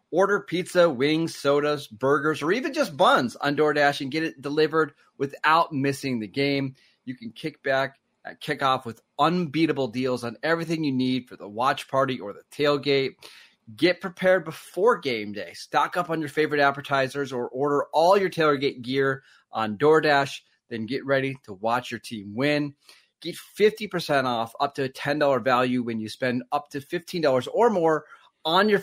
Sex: male